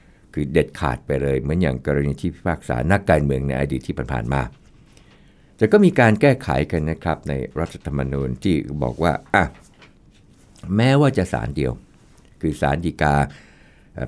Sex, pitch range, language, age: male, 70-105 Hz, Thai, 60-79